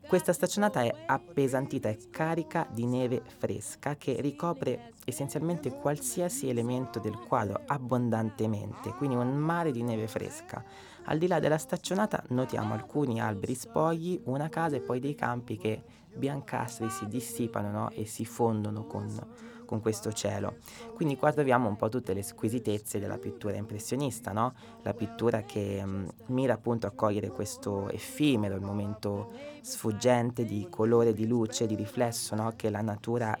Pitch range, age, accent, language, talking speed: 105-130 Hz, 20-39, native, Italian, 145 wpm